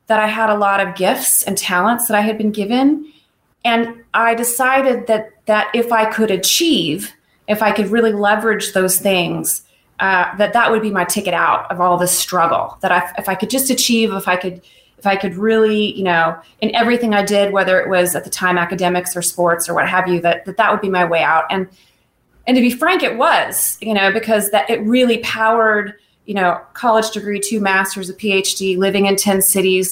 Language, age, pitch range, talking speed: English, 30-49, 185-220 Hz, 220 wpm